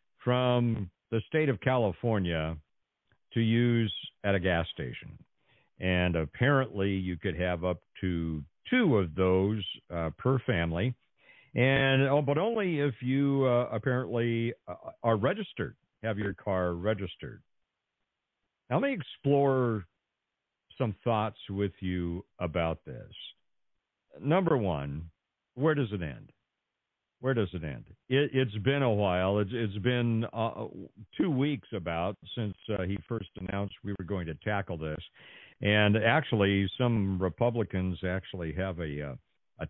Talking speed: 135 wpm